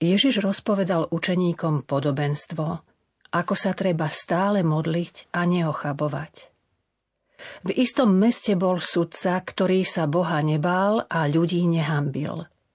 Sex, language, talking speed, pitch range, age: female, Slovak, 110 wpm, 155-190 Hz, 40-59